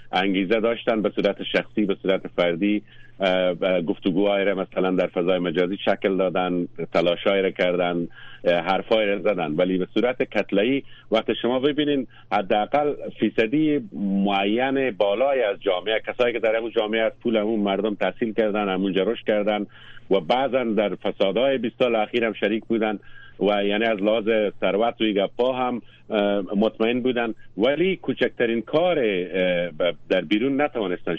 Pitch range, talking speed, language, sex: 95-120 Hz, 145 wpm, Persian, male